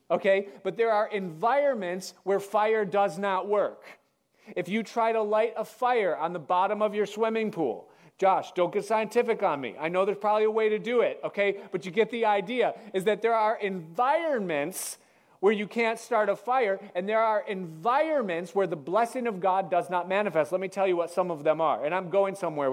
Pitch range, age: 165-215 Hz, 40-59